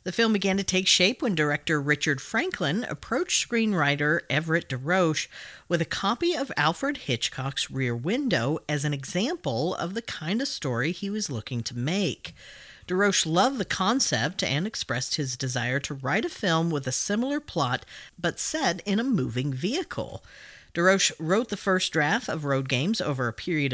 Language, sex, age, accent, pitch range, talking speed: English, female, 40-59, American, 135-190 Hz, 170 wpm